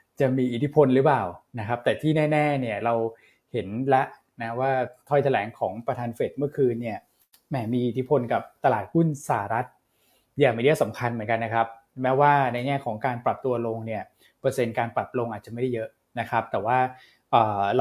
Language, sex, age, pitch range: Thai, male, 20-39, 115-140 Hz